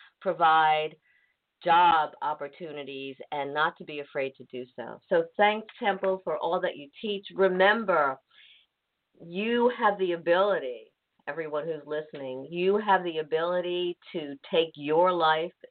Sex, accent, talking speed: female, American, 135 wpm